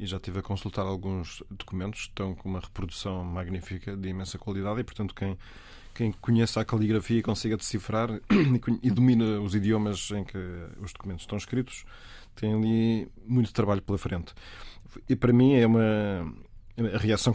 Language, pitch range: Portuguese, 95-115 Hz